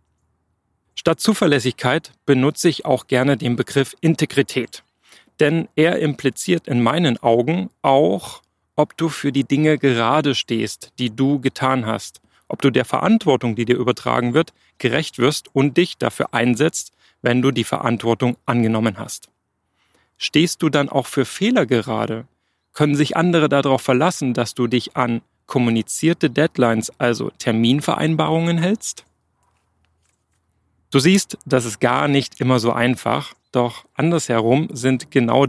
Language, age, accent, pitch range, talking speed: German, 40-59, German, 120-155 Hz, 135 wpm